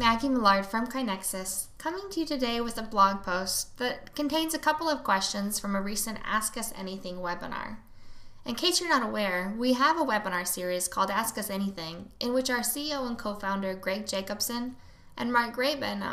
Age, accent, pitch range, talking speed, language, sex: 10-29, American, 190-245 Hz, 185 wpm, English, female